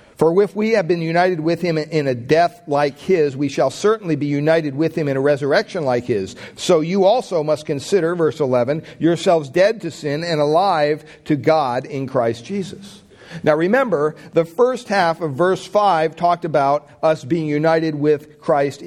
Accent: American